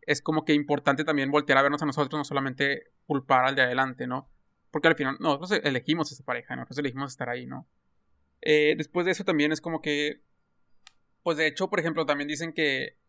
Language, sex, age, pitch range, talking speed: Spanish, male, 20-39, 135-155 Hz, 215 wpm